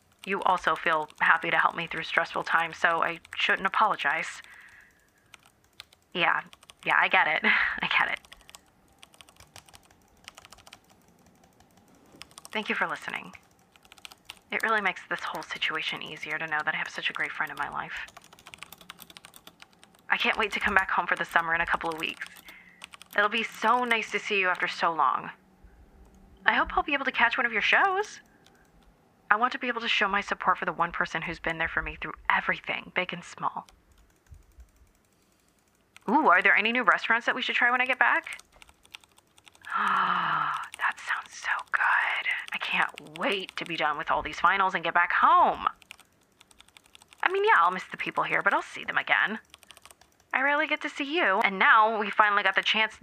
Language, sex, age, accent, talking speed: English, female, 30-49, American, 185 wpm